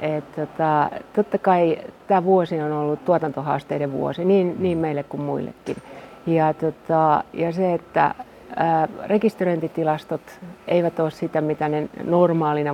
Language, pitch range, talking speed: Finnish, 145-165 Hz, 115 wpm